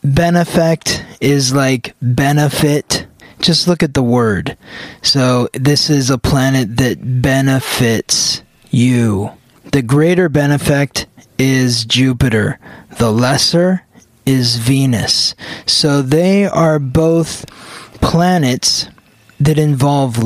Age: 20-39